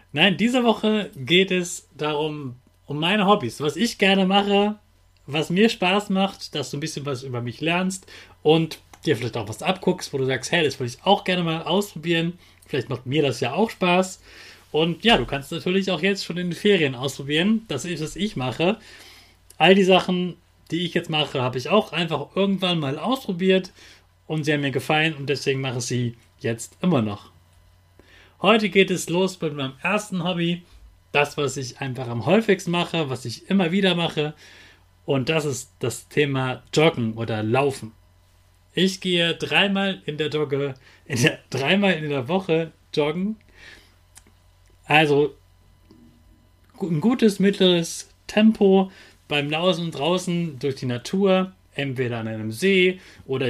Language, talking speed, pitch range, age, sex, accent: German, 170 wpm, 120-185 Hz, 30-49, male, German